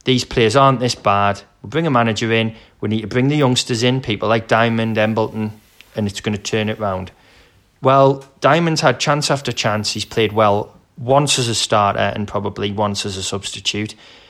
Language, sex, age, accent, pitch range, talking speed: English, male, 30-49, British, 100-125 Hz, 195 wpm